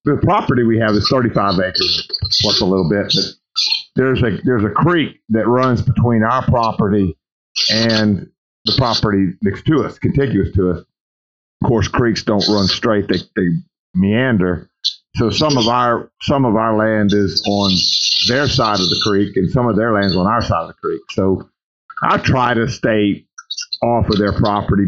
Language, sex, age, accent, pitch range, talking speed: English, male, 50-69, American, 100-130 Hz, 185 wpm